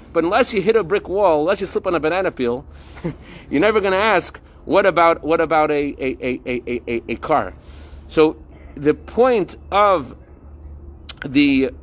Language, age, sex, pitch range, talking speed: English, 40-59, male, 125-215 Hz, 180 wpm